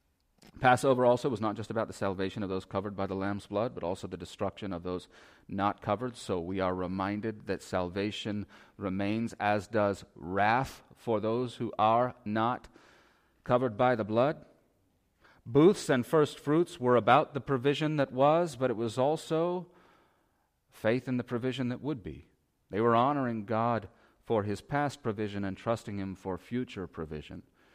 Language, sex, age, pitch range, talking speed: English, male, 40-59, 95-120 Hz, 165 wpm